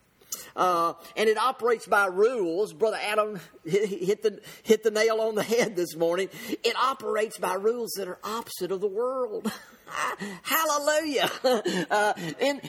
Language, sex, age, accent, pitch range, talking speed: English, male, 50-69, American, 205-270 Hz, 145 wpm